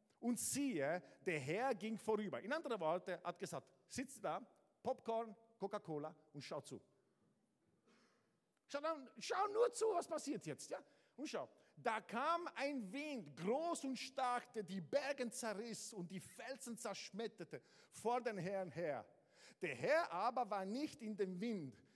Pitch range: 185-255 Hz